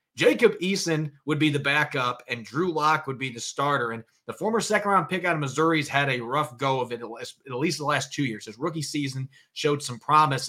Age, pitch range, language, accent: 30-49, 135-165 Hz, English, American